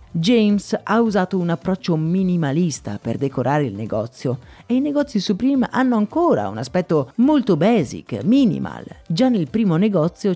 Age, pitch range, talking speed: 30-49, 155-230 Hz, 145 wpm